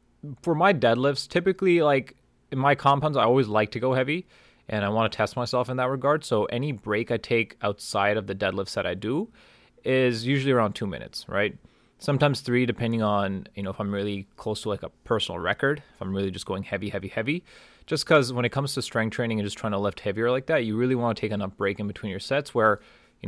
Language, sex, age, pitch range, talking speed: English, male, 20-39, 100-125 Hz, 240 wpm